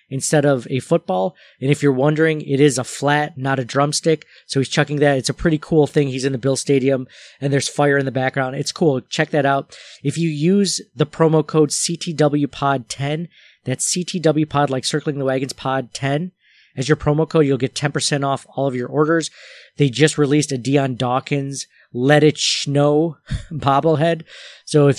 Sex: male